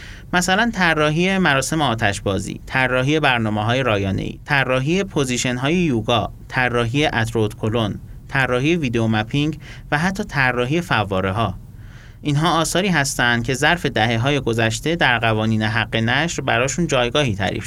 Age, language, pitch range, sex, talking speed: 30-49, Persian, 115-155 Hz, male, 135 wpm